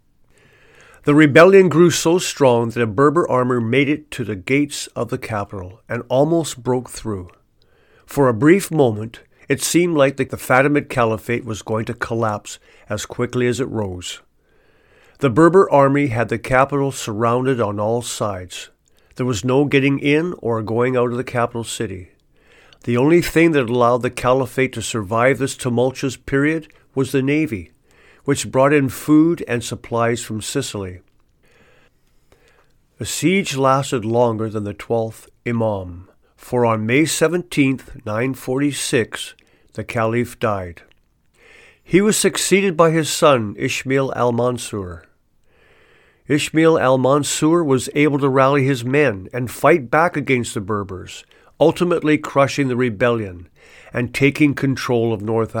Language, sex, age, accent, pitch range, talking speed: English, male, 50-69, American, 115-145 Hz, 140 wpm